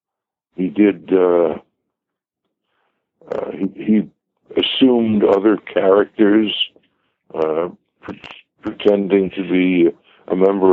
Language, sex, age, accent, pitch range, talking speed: English, male, 60-79, American, 90-115 Hz, 90 wpm